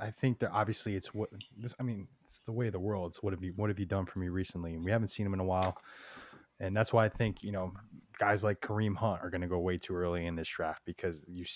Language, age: English, 20-39